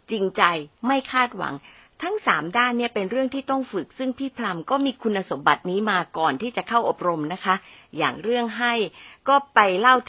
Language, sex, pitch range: Thai, female, 175-240 Hz